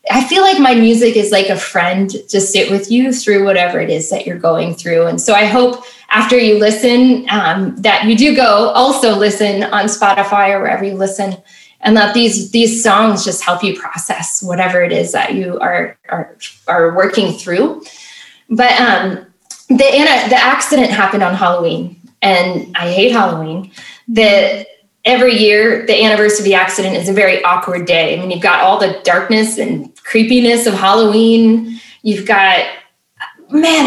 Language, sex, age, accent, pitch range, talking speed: English, female, 20-39, American, 195-245 Hz, 175 wpm